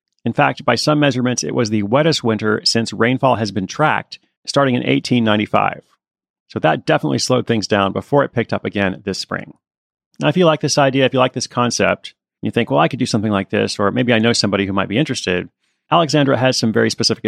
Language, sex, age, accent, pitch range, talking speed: English, male, 30-49, American, 110-135 Hz, 230 wpm